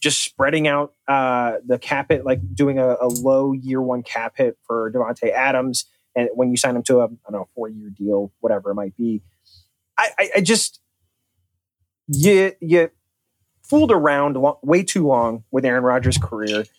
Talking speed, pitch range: 170 wpm, 125-170 Hz